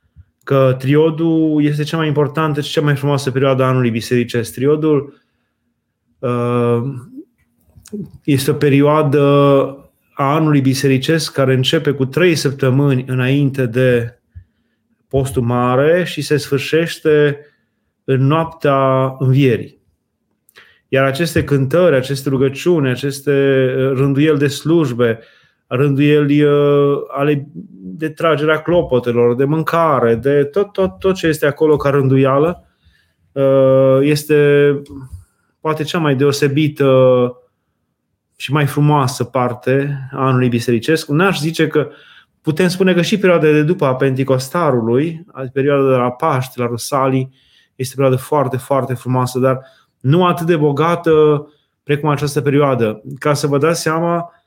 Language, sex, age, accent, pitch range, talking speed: Romanian, male, 30-49, native, 130-150 Hz, 120 wpm